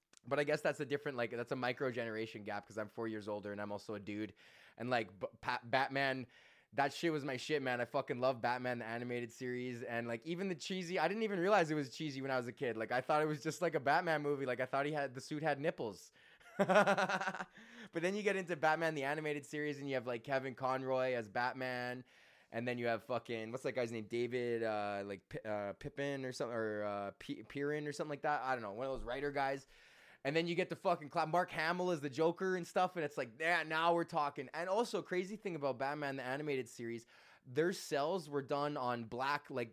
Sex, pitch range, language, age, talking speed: male, 120-155 Hz, English, 20-39, 240 wpm